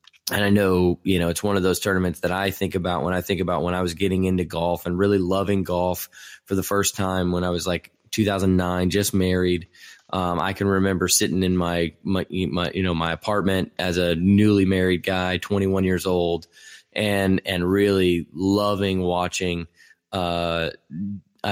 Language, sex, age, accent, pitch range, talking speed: English, male, 20-39, American, 85-95 Hz, 185 wpm